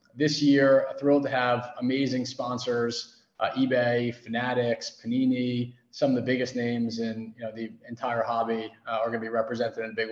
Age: 30-49